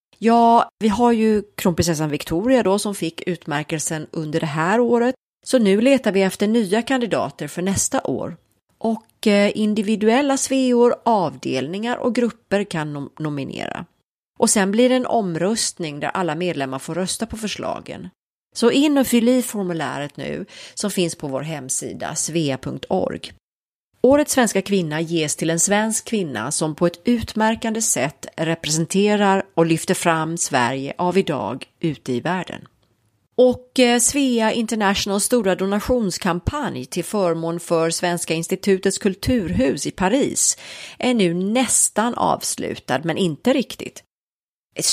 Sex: female